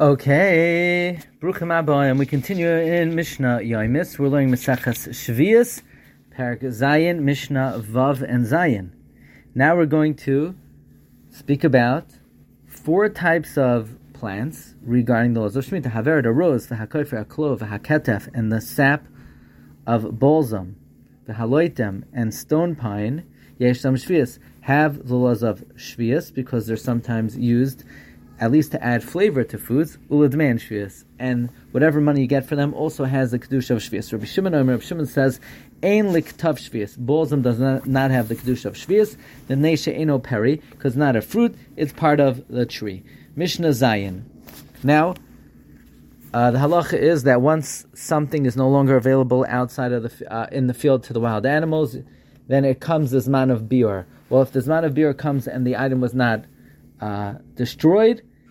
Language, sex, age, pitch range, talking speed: English, male, 30-49, 120-150 Hz, 160 wpm